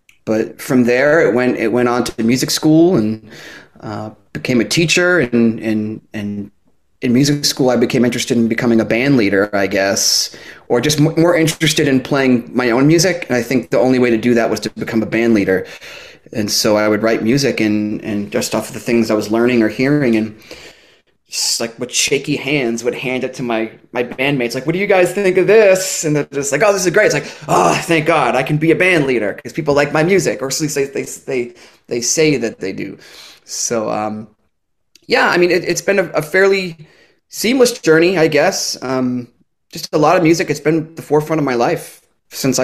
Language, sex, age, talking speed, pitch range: English, male, 30-49, 220 wpm, 115-155 Hz